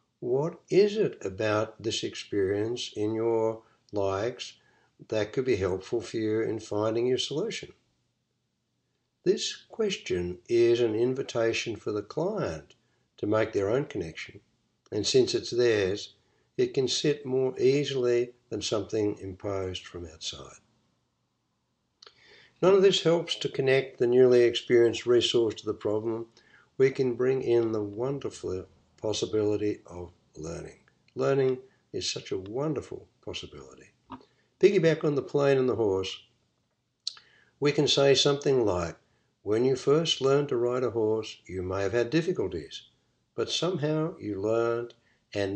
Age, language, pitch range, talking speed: 60-79, English, 110-155 Hz, 135 wpm